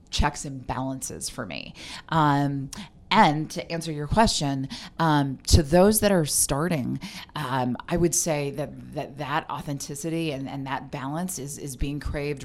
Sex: female